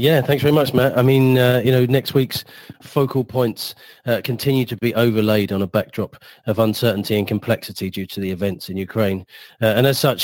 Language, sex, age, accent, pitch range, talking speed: English, male, 40-59, British, 105-130 Hz, 210 wpm